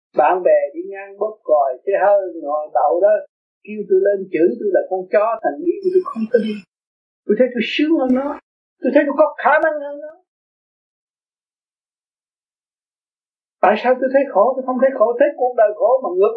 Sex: male